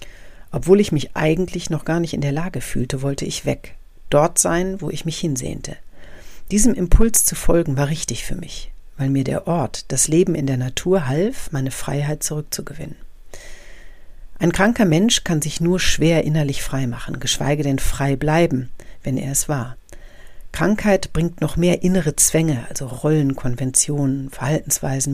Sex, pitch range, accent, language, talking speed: female, 135-165 Hz, German, German, 165 wpm